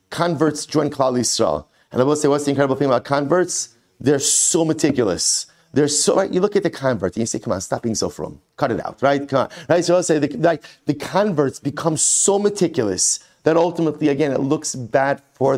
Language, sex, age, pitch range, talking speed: English, male, 30-49, 130-160 Hz, 225 wpm